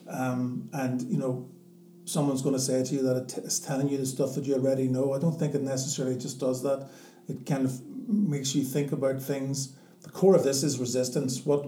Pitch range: 130-155 Hz